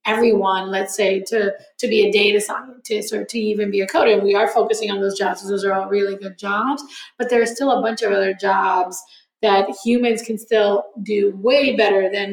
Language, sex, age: English, female, 20-39